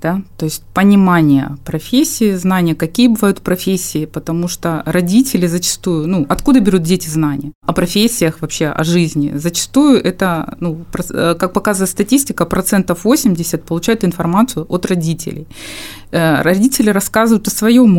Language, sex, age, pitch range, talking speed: Russian, female, 20-39, 160-195 Hz, 130 wpm